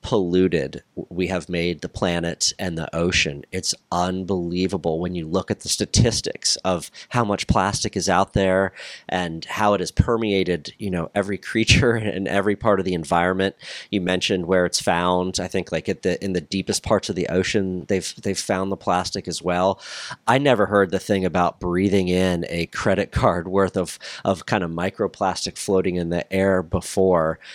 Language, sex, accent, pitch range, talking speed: English, male, American, 90-100 Hz, 185 wpm